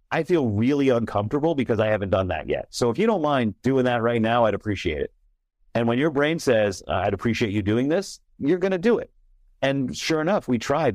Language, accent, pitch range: English, American, 105-125 Hz